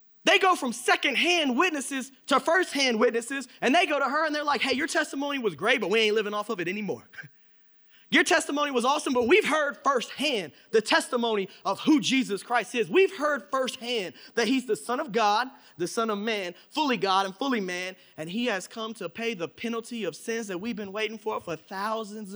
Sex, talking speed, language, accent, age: male, 210 wpm, English, American, 20-39